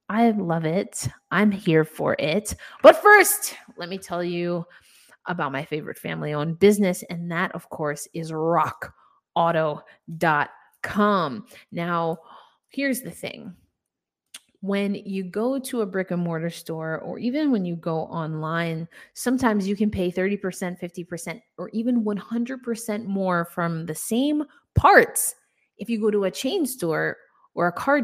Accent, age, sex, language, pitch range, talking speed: American, 20-39, female, English, 170-225 Hz, 140 wpm